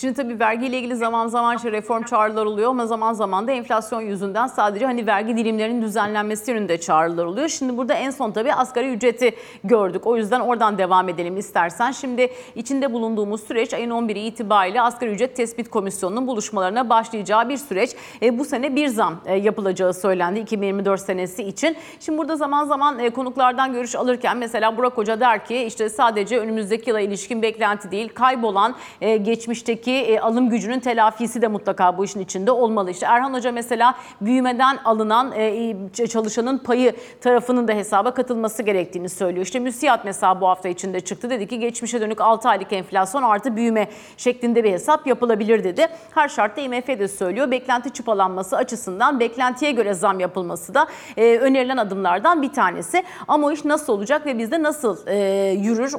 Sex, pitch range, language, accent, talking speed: female, 210-255 Hz, Turkish, native, 165 wpm